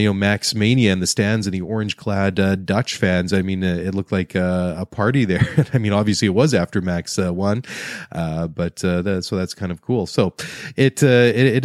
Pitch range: 95-110 Hz